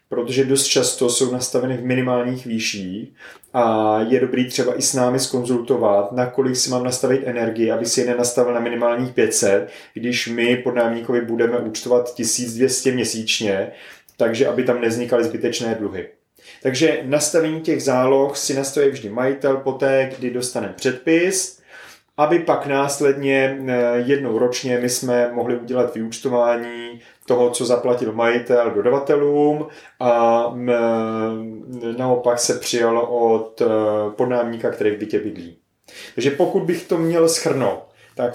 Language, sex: Czech, male